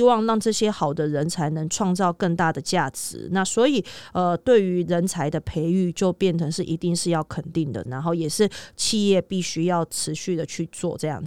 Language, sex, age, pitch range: Chinese, female, 30-49, 165-195 Hz